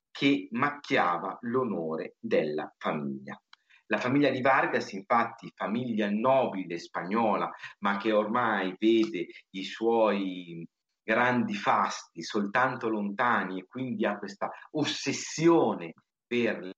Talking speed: 105 wpm